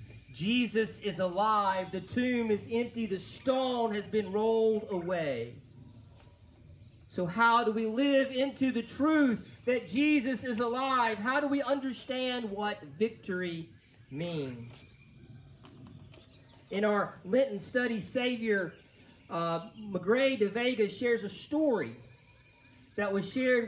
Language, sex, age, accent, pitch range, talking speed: English, male, 40-59, American, 155-225 Hz, 115 wpm